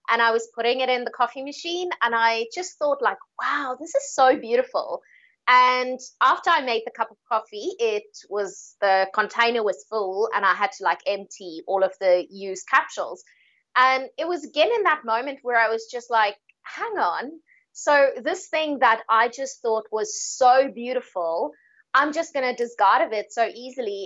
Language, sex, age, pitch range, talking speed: English, female, 20-39, 215-290 Hz, 190 wpm